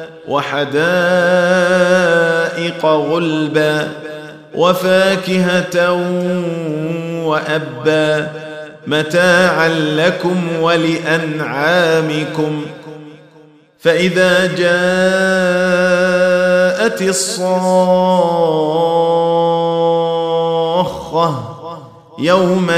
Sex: male